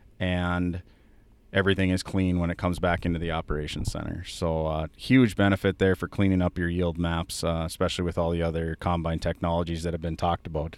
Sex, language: male, English